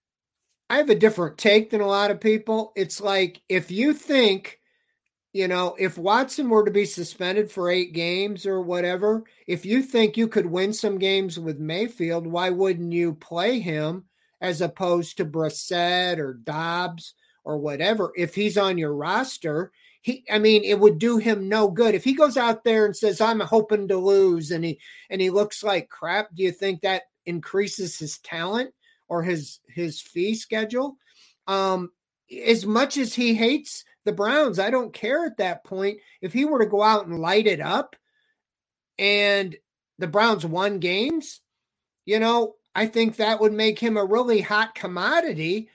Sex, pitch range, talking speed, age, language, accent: male, 180-230 Hz, 180 wpm, 50-69, English, American